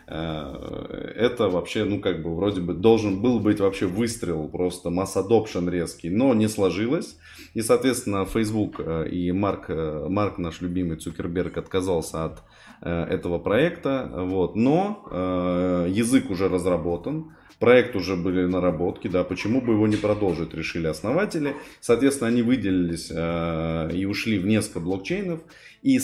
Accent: native